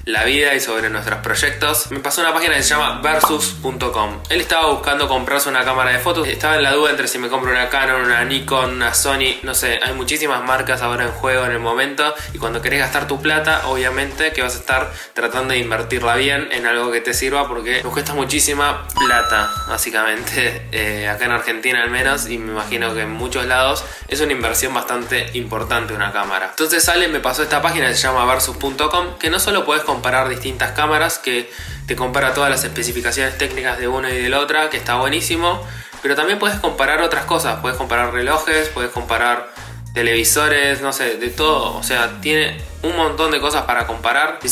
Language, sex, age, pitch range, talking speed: Spanish, male, 20-39, 120-140 Hz, 205 wpm